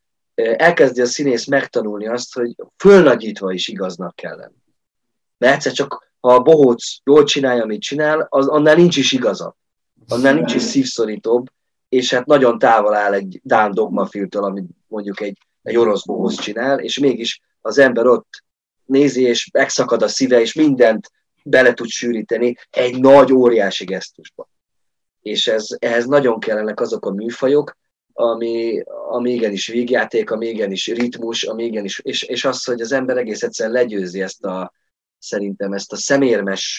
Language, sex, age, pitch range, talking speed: Hungarian, male, 30-49, 105-130 Hz, 155 wpm